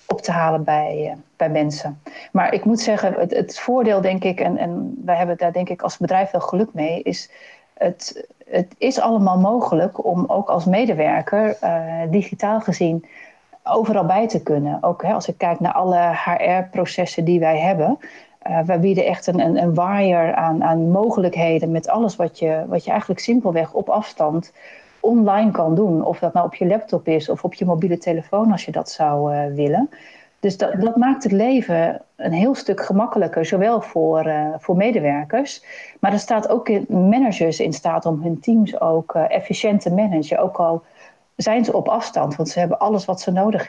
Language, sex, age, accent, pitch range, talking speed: Dutch, female, 40-59, Dutch, 165-210 Hz, 190 wpm